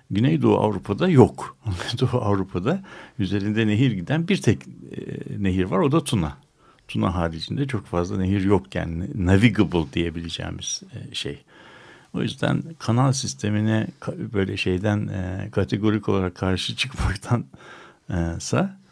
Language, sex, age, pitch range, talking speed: Turkish, male, 60-79, 90-120 Hz, 120 wpm